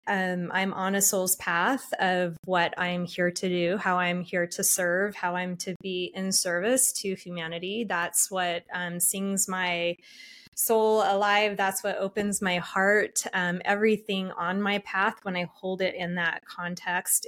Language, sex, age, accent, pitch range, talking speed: English, female, 20-39, American, 175-205 Hz, 170 wpm